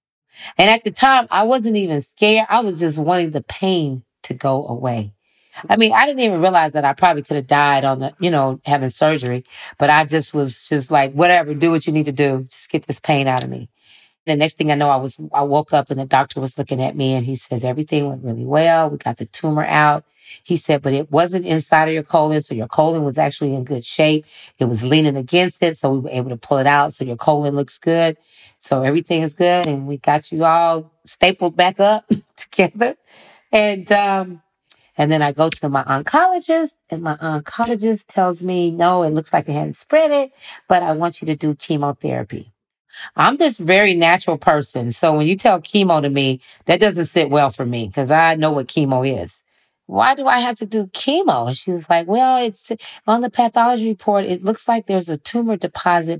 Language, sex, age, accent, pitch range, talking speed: English, female, 40-59, American, 140-185 Hz, 225 wpm